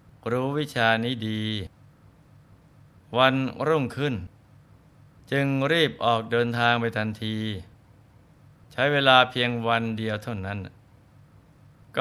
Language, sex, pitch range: Thai, male, 110-130 Hz